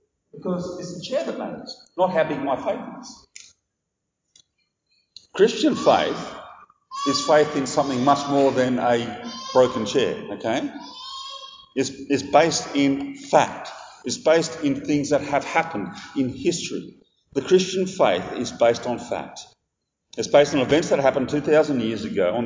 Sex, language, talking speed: male, English, 145 wpm